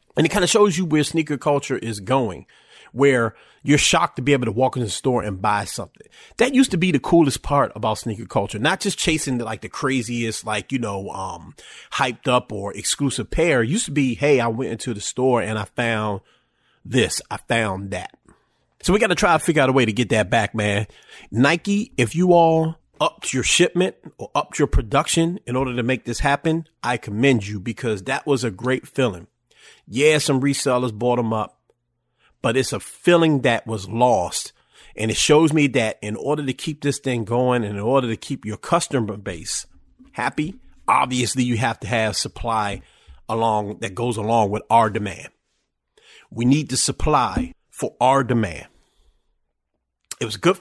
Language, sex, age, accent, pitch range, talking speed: English, male, 30-49, American, 115-155 Hz, 200 wpm